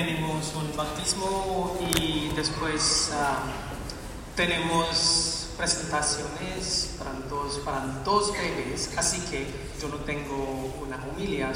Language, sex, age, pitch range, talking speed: English, male, 40-59, 160-265 Hz, 105 wpm